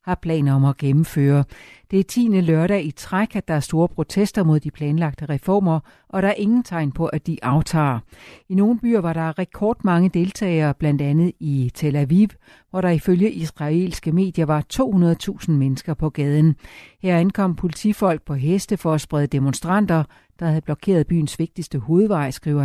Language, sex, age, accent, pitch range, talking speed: Danish, female, 60-79, native, 145-190 Hz, 175 wpm